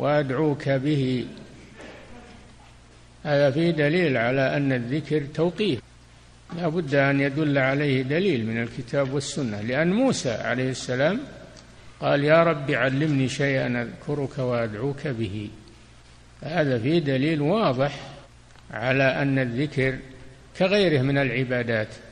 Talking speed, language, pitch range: 110 wpm, Arabic, 125-155 Hz